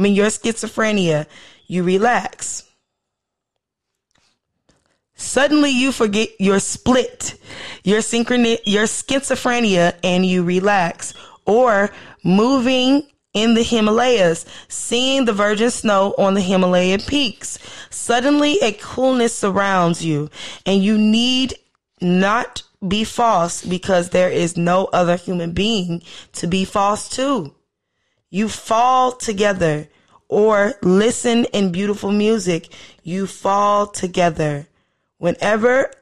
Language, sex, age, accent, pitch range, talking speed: English, female, 20-39, American, 180-230 Hz, 110 wpm